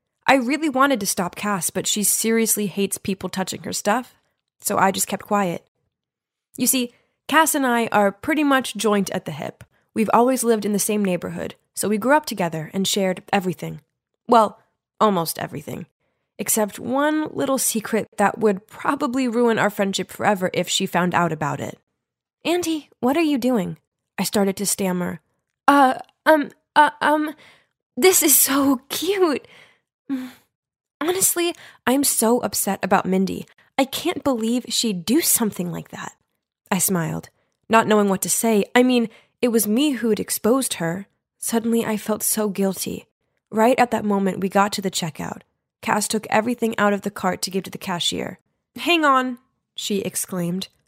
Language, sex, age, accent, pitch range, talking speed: English, female, 20-39, American, 195-260 Hz, 165 wpm